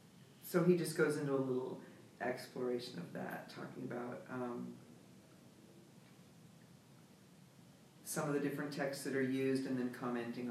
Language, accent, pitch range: English, American, 125-145 Hz